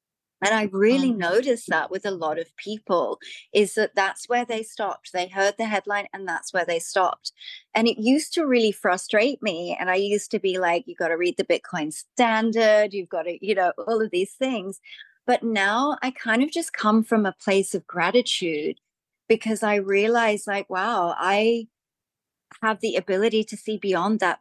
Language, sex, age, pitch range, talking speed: English, female, 30-49, 175-215 Hz, 195 wpm